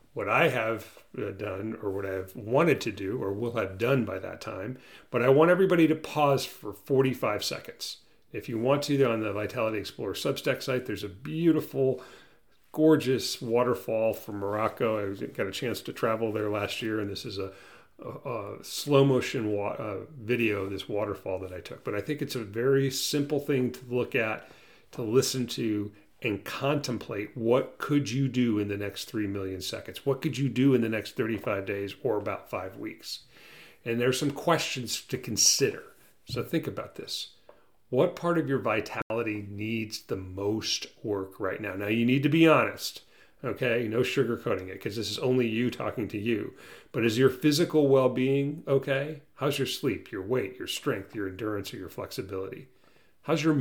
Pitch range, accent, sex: 105-135 Hz, American, male